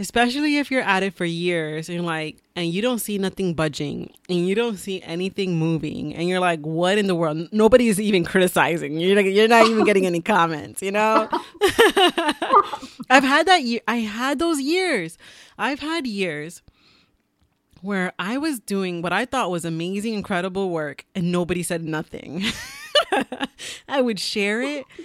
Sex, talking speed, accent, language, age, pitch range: female, 175 wpm, American, English, 30-49, 175-255 Hz